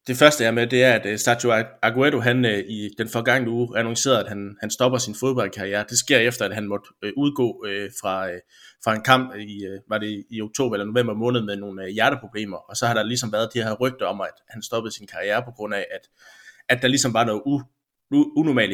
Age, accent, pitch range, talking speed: 20-39, native, 105-125 Hz, 245 wpm